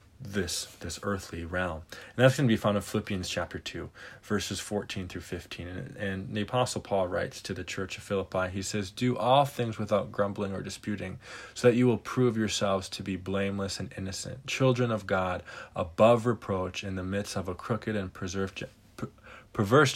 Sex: male